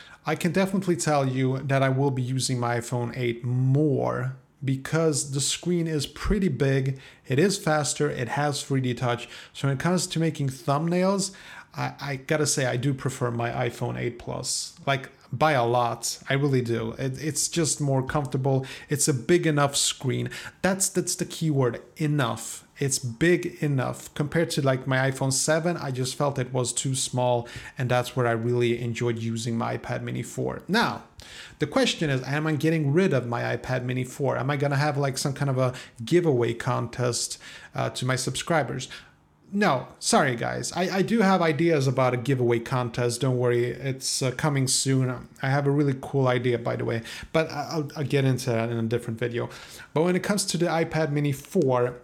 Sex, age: male, 30-49